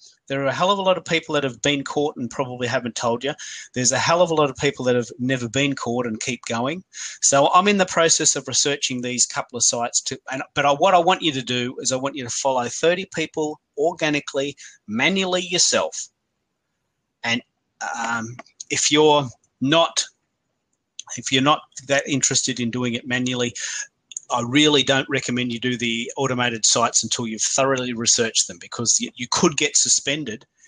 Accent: Australian